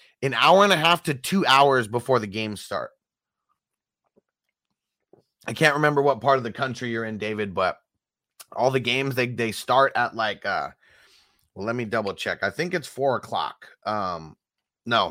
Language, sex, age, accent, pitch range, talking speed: English, male, 30-49, American, 110-145 Hz, 175 wpm